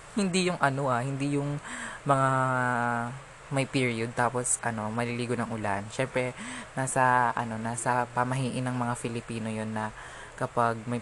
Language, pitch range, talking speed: Filipino, 115-145 Hz, 140 wpm